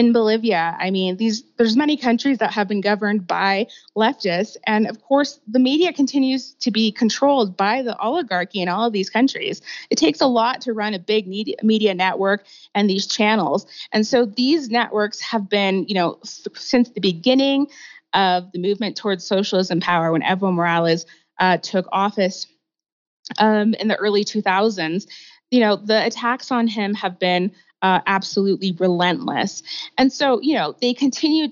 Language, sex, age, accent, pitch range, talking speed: English, female, 20-39, American, 185-230 Hz, 170 wpm